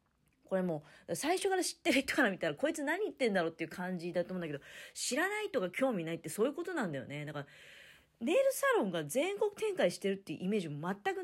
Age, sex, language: 40-59, female, Japanese